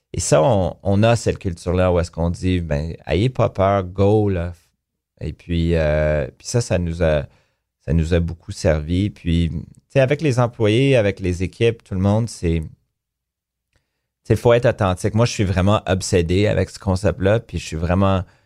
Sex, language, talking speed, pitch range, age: male, French, 190 wpm, 85-105 Hz, 30-49